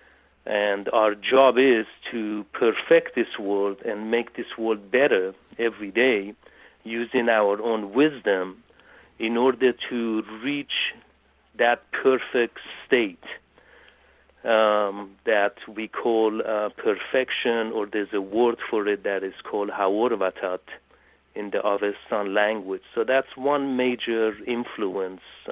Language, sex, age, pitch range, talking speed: English, male, 50-69, 105-125 Hz, 120 wpm